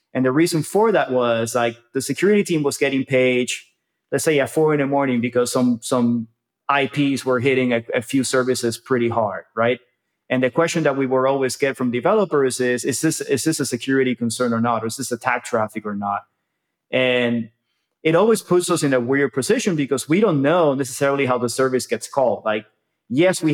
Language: English